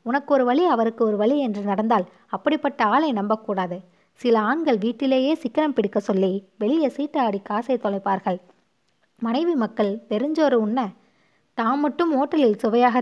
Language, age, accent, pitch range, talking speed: Tamil, 20-39, native, 200-255 Hz, 140 wpm